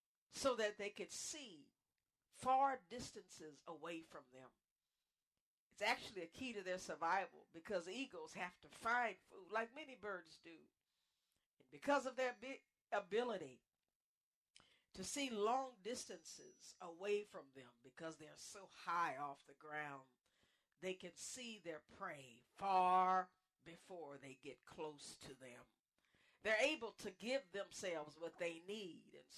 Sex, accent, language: female, American, English